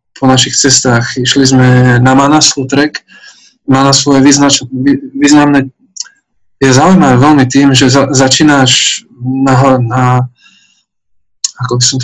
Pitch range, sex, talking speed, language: 125-140 Hz, male, 100 wpm, Slovak